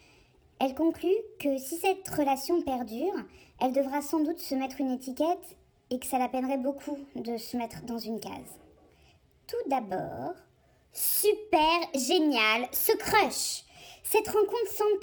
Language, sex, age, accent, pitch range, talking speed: French, male, 20-39, French, 270-345 Hz, 145 wpm